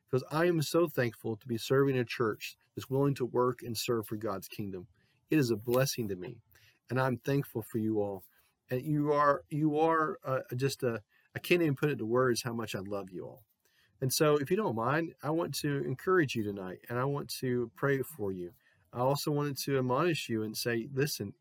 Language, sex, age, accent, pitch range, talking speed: English, male, 40-59, American, 115-145 Hz, 225 wpm